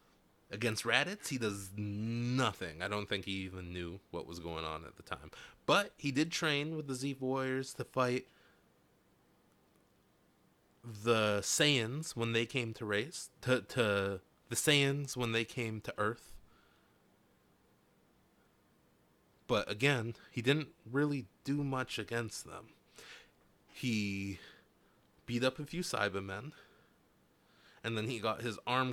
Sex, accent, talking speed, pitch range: male, American, 135 wpm, 105-130 Hz